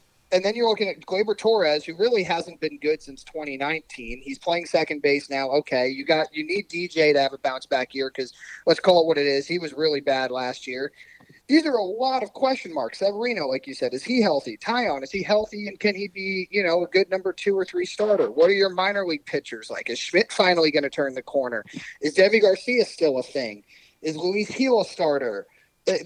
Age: 40-59